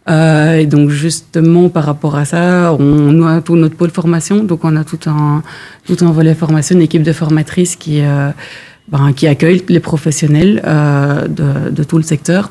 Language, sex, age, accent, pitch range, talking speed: French, female, 30-49, French, 155-175 Hz, 195 wpm